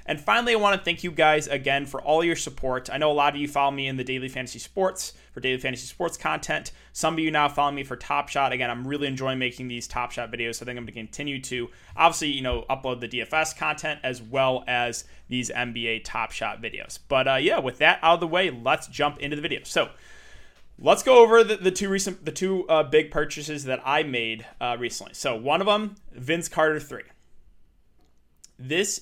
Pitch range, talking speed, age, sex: 125-155 Hz, 230 wpm, 20-39, male